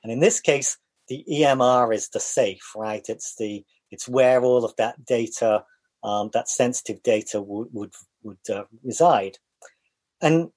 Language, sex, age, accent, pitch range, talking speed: English, male, 40-59, British, 125-175 Hz, 160 wpm